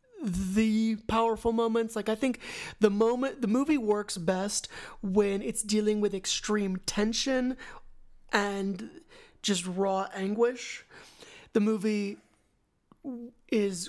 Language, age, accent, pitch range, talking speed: English, 30-49, American, 185-225 Hz, 110 wpm